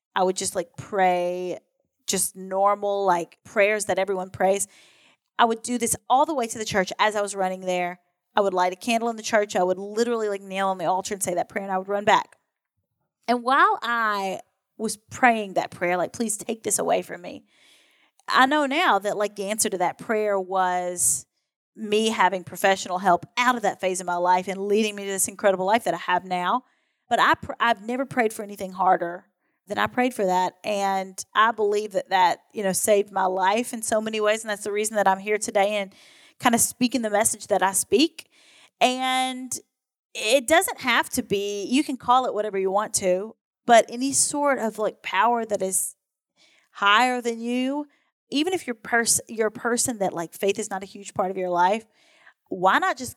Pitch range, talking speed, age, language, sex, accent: 190-235 Hz, 215 wpm, 30-49, English, female, American